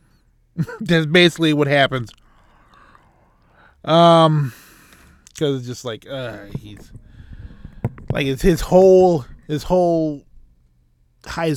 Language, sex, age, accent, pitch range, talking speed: English, male, 20-39, American, 115-145 Hz, 95 wpm